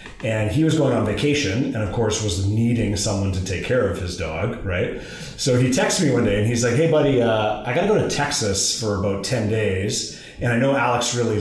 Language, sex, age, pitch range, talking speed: English, male, 30-49, 110-140 Hz, 240 wpm